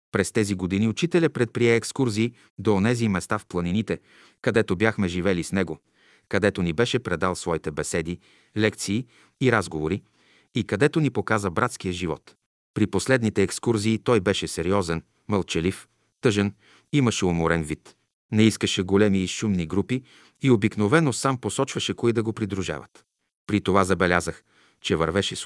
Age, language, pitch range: 40-59, Bulgarian, 95-125 Hz